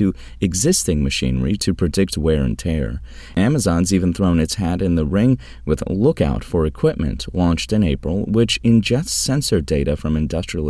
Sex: male